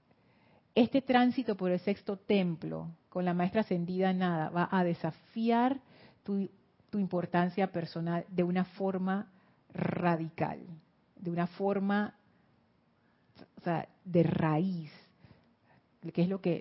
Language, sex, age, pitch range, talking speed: Spanish, female, 40-59, 170-200 Hz, 125 wpm